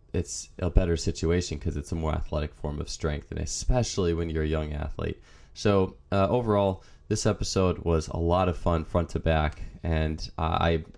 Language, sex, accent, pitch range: English, male, American, 80-95 Hz